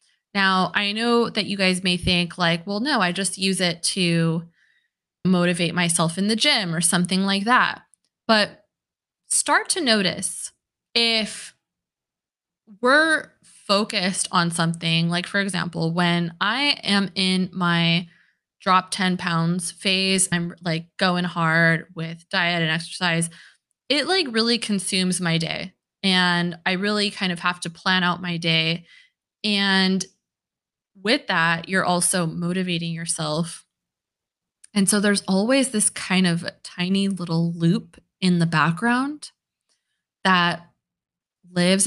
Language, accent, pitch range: English, American, 170-200 Hz